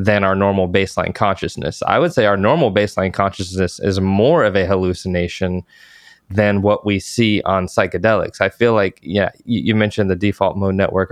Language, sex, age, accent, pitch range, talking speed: English, male, 20-39, American, 95-115 Hz, 185 wpm